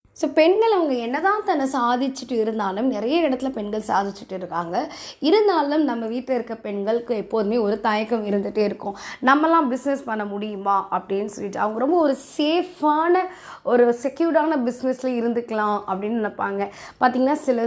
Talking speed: 130 wpm